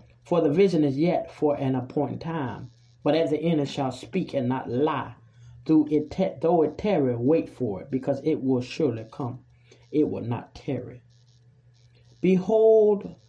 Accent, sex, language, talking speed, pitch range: American, male, English, 160 wpm, 120-160 Hz